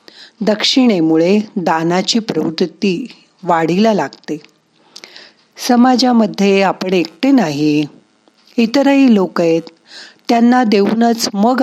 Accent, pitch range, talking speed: native, 175-235 Hz, 75 wpm